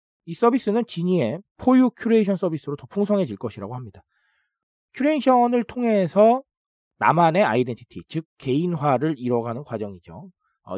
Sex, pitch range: male, 125-205 Hz